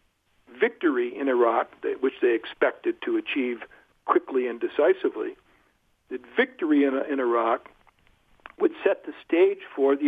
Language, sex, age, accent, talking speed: English, male, 60-79, American, 130 wpm